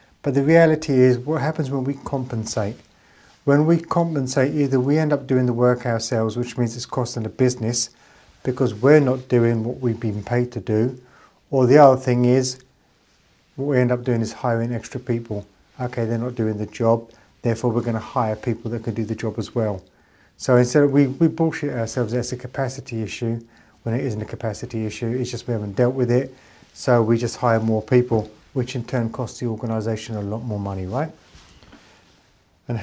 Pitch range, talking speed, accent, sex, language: 115-135 Hz, 200 wpm, British, male, English